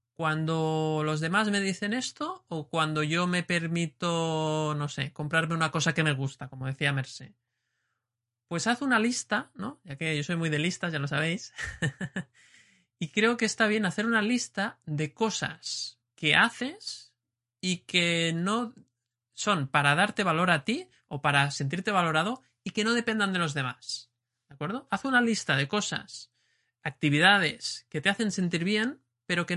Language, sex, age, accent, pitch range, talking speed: Spanish, male, 20-39, Spanish, 145-205 Hz, 170 wpm